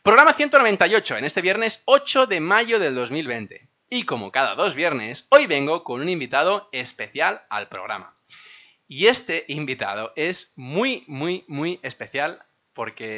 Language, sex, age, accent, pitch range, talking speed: Spanish, male, 20-39, Spanish, 120-200 Hz, 145 wpm